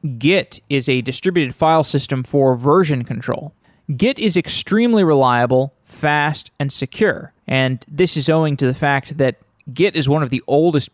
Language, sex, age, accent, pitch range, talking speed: English, male, 20-39, American, 130-170 Hz, 165 wpm